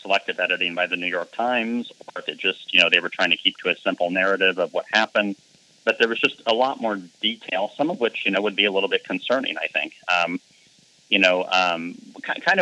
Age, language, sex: 40-59, English, male